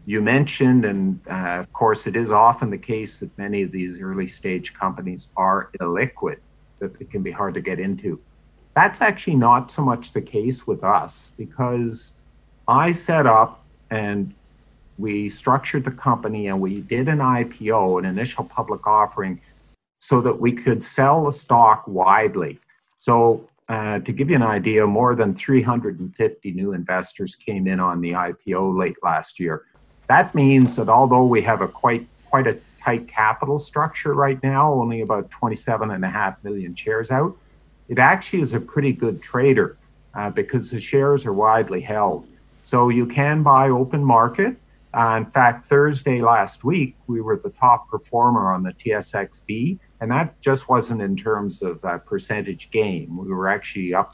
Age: 50-69